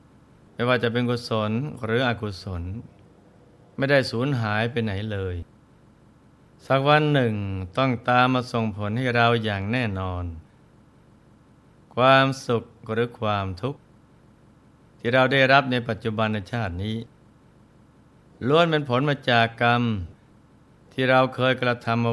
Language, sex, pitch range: Thai, male, 110-130 Hz